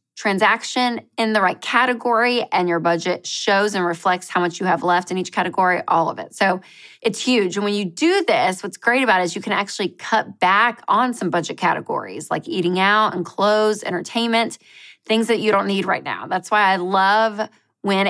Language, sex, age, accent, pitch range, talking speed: English, female, 20-39, American, 180-225 Hz, 205 wpm